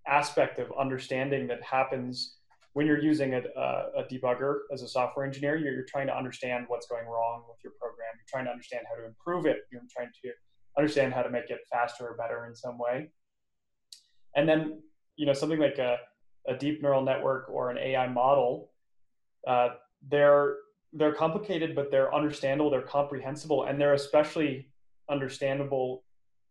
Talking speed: 170 wpm